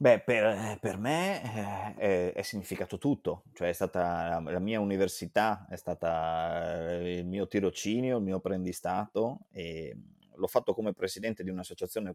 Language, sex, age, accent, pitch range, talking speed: Italian, male, 20-39, native, 90-105 Hz, 145 wpm